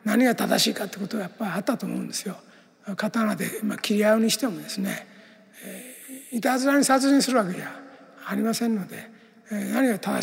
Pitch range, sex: 200-225 Hz, male